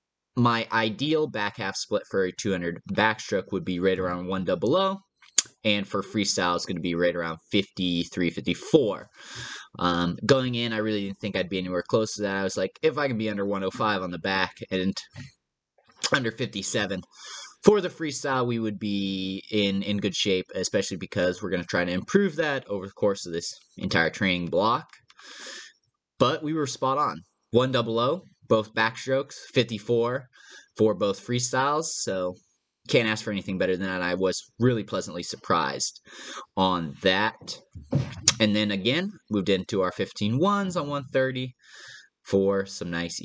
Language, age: English, 20-39